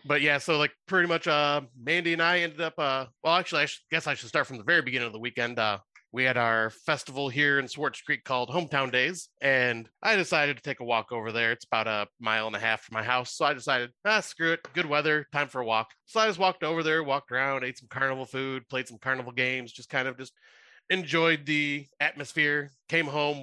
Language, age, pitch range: English, 30-49, 120-155 Hz